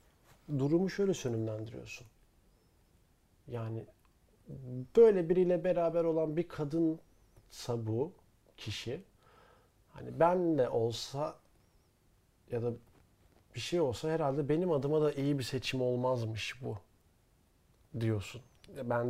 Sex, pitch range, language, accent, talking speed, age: male, 115-170 Hz, Turkish, native, 105 wpm, 40-59